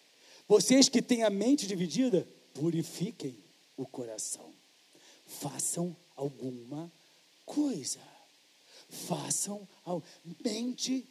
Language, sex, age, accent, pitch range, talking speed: English, male, 50-69, Brazilian, 175-255 Hz, 80 wpm